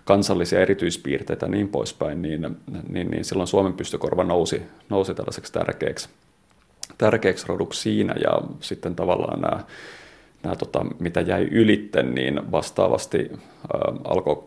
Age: 30-49